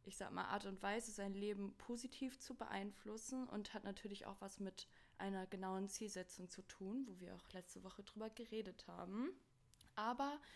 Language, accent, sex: German, German, female